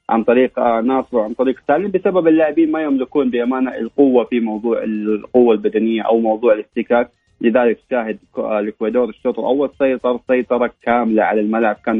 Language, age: Arabic, 30-49